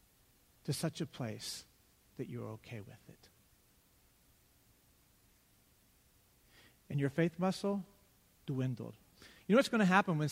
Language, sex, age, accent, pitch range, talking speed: English, male, 50-69, American, 145-220 Hz, 120 wpm